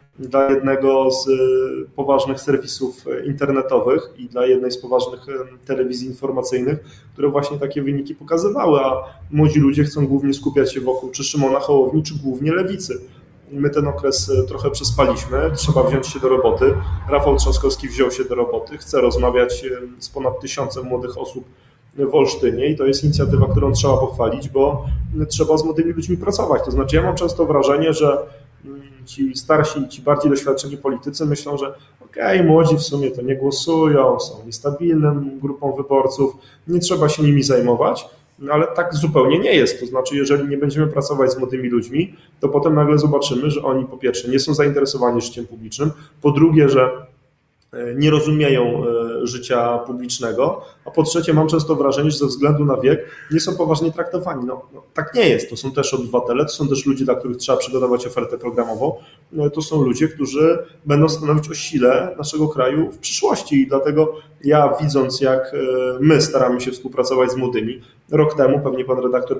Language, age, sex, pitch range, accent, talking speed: Polish, 30-49, male, 130-150 Hz, native, 170 wpm